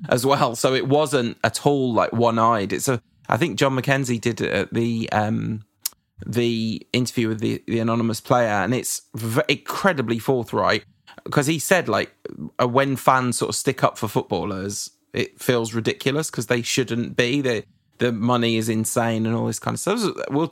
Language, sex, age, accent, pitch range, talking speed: English, male, 20-39, British, 115-130 Hz, 185 wpm